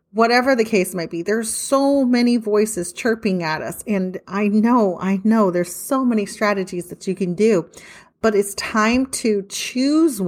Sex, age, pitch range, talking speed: female, 30-49, 180-225 Hz, 175 wpm